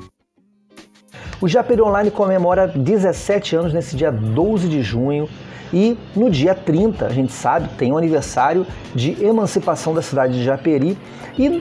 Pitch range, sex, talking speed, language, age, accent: 135-185 Hz, male, 145 wpm, Portuguese, 30-49, Brazilian